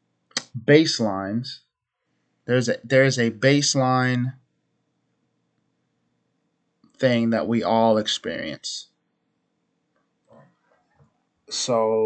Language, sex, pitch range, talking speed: English, male, 110-130 Hz, 60 wpm